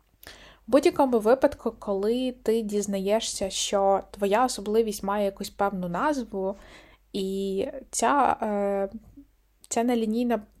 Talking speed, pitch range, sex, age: 95 wpm, 200-235 Hz, female, 20-39